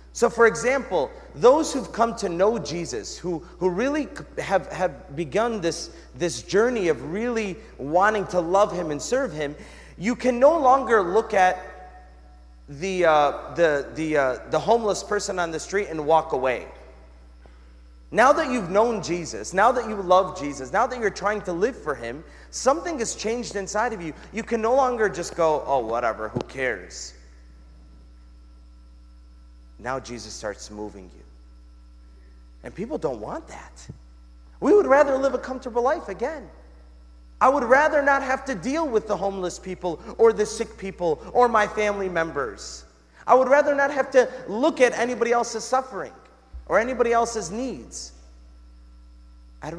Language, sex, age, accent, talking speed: English, male, 30-49, American, 160 wpm